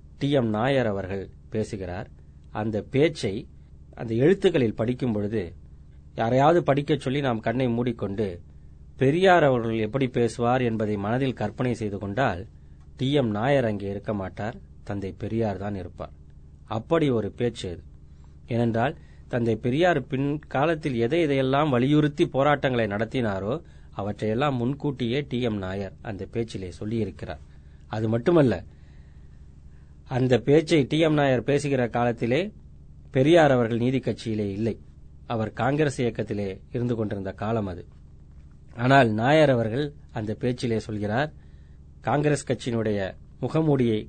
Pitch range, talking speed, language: 95-130 Hz, 110 wpm, Tamil